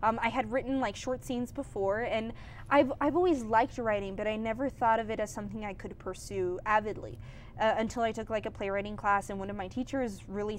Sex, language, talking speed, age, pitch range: female, English, 225 wpm, 20-39, 190-230 Hz